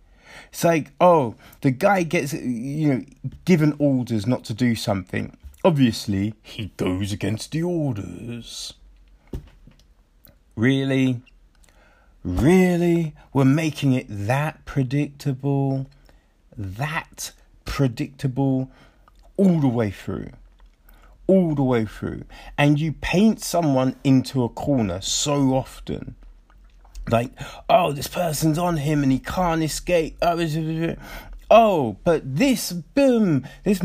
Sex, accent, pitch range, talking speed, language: male, British, 125-175 Hz, 110 wpm, English